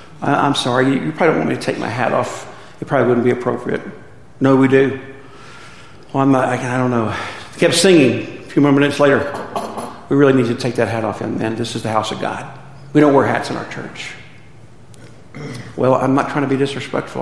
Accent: American